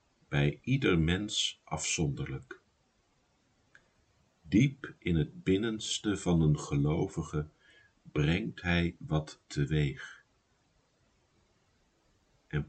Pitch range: 75-95 Hz